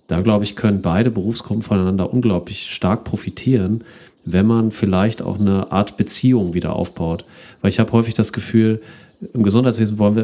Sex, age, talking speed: male, 40-59, 170 wpm